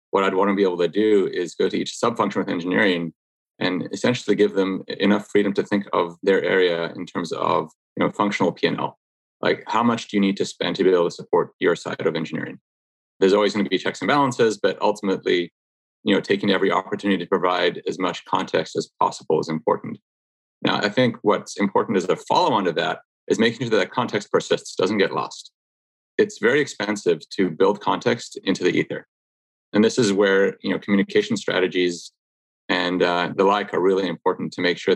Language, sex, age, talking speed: English, male, 30-49, 210 wpm